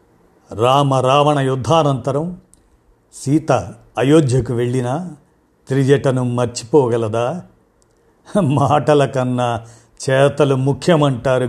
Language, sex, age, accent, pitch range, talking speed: Telugu, male, 50-69, native, 115-150 Hz, 65 wpm